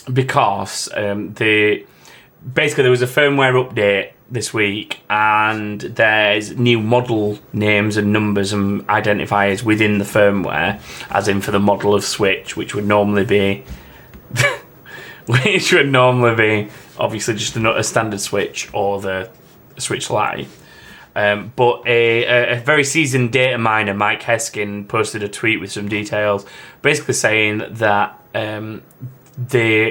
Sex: male